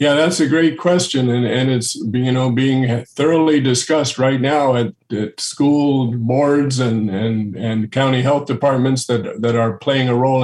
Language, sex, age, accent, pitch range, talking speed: English, male, 50-69, American, 125-145 Hz, 160 wpm